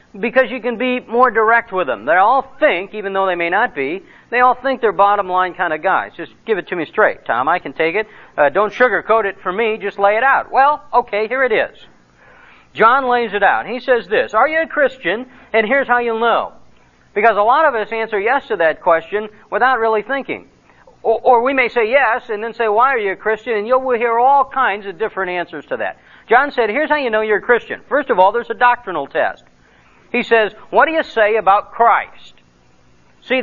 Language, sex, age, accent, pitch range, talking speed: English, male, 50-69, American, 195-265 Hz, 235 wpm